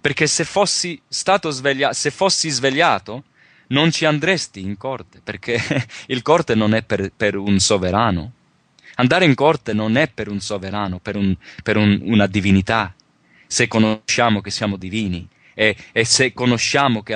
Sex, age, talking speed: male, 30-49, 160 wpm